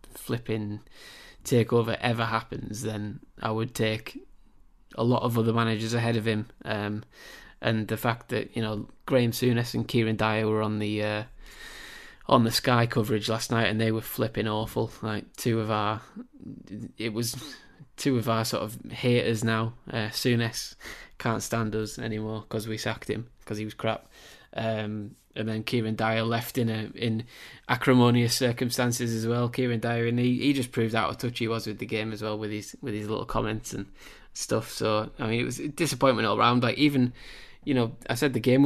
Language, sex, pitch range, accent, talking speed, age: English, male, 110-120 Hz, British, 195 wpm, 20-39